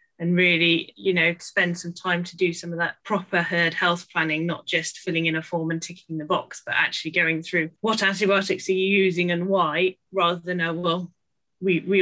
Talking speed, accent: 215 wpm, British